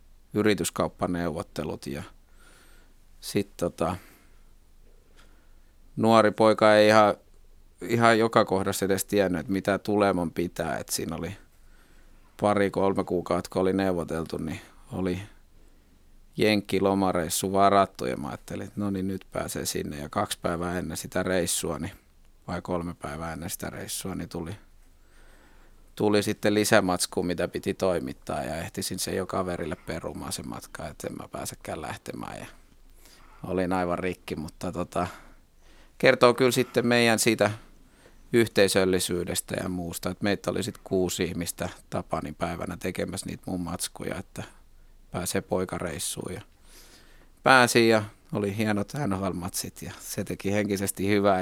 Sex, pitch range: male, 85-105 Hz